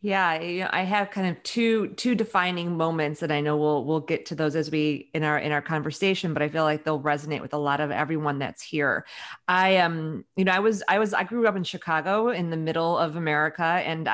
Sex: female